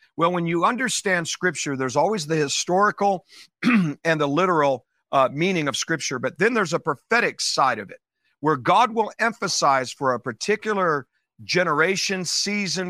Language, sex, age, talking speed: English, male, 50-69, 155 wpm